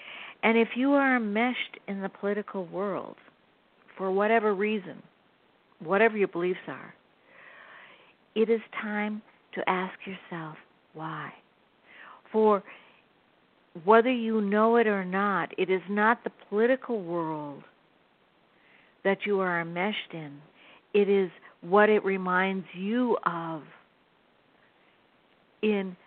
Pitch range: 185-220 Hz